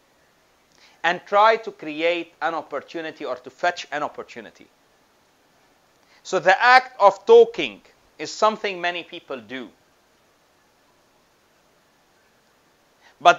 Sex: male